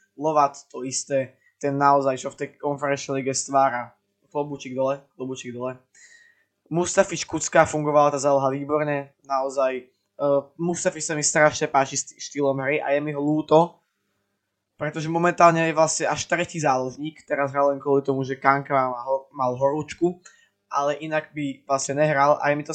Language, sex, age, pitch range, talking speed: Slovak, male, 20-39, 135-155 Hz, 160 wpm